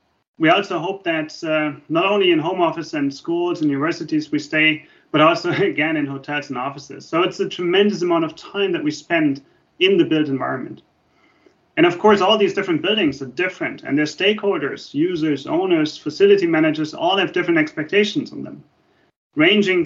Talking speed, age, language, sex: 180 wpm, 30-49, English, male